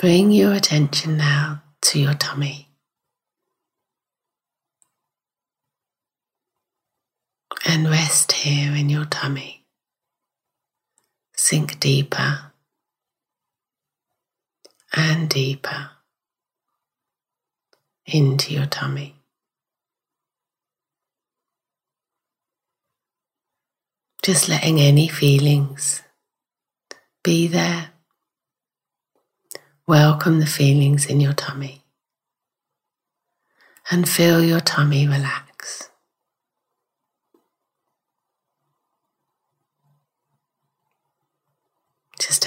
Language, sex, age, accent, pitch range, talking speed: English, female, 30-49, British, 140-160 Hz, 55 wpm